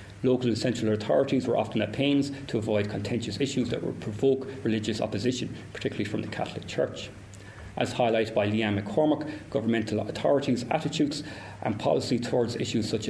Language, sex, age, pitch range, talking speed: English, male, 40-59, 105-125 Hz, 160 wpm